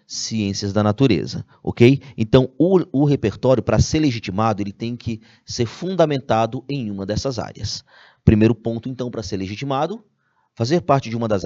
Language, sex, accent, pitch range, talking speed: Portuguese, male, Brazilian, 105-150 Hz, 160 wpm